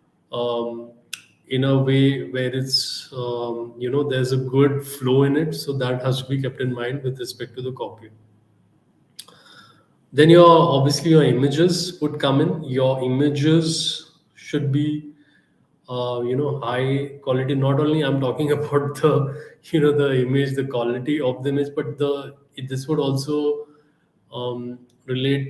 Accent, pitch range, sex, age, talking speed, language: Indian, 125-145 Hz, male, 20-39, 160 wpm, English